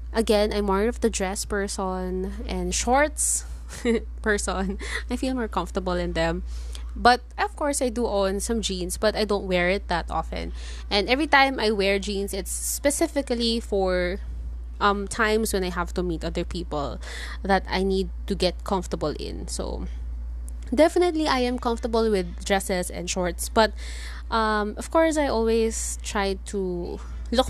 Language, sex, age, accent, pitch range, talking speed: English, female, 20-39, Filipino, 175-225 Hz, 160 wpm